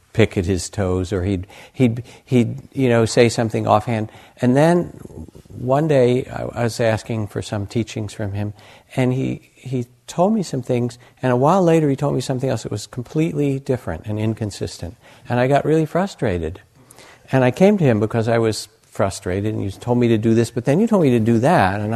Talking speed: 210 wpm